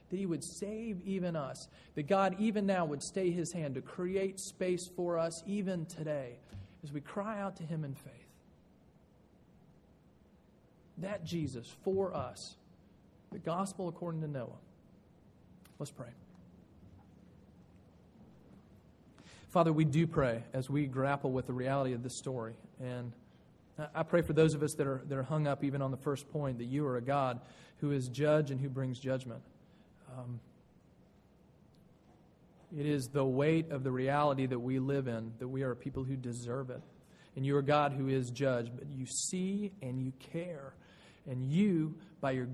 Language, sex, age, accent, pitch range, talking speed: English, male, 40-59, American, 130-165 Hz, 170 wpm